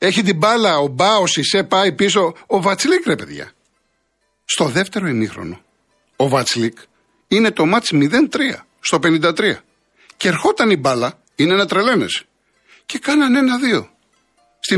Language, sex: Greek, male